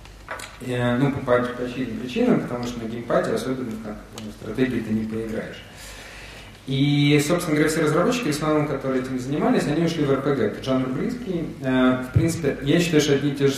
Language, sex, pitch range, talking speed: Russian, male, 110-140 Hz, 210 wpm